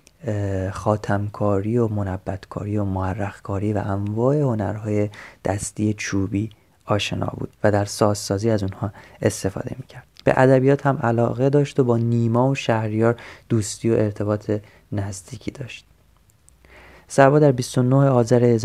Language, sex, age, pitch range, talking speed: Persian, male, 30-49, 100-125 Hz, 120 wpm